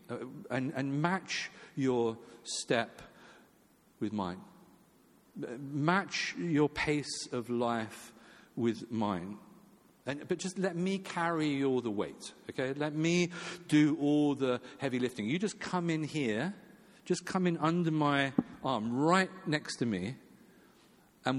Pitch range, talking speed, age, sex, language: 110-145 Hz, 130 wpm, 50-69, male, English